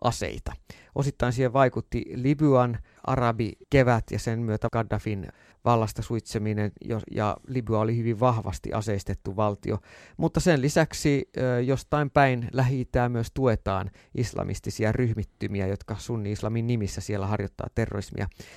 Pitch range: 100-130 Hz